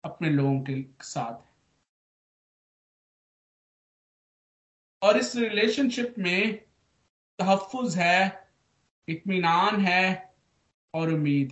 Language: Hindi